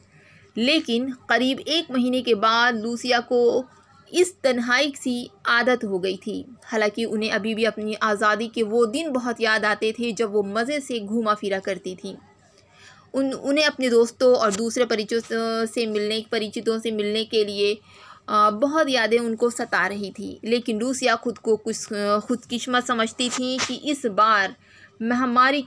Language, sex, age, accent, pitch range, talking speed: Hindi, female, 20-39, native, 220-270 Hz, 160 wpm